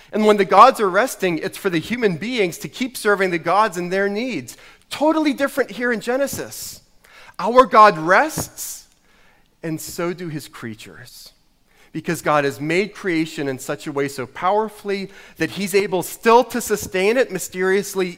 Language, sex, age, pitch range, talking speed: English, male, 40-59, 175-230 Hz, 170 wpm